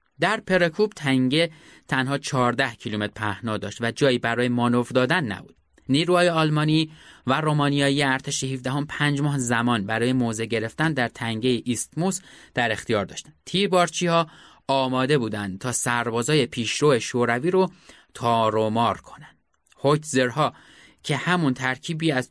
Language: Persian